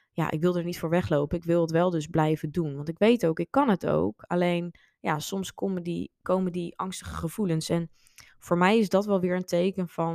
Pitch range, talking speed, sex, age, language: 155-180 Hz, 240 wpm, female, 20-39, Dutch